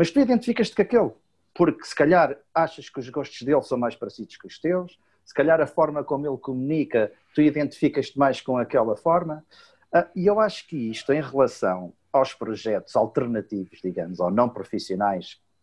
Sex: male